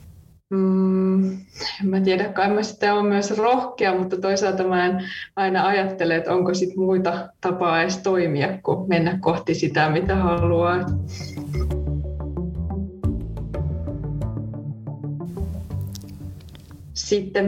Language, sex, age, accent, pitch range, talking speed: Finnish, female, 20-39, native, 170-195 Hz, 100 wpm